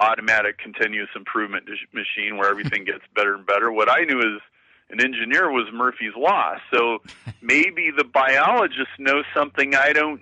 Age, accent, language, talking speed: 50-69, American, English, 160 wpm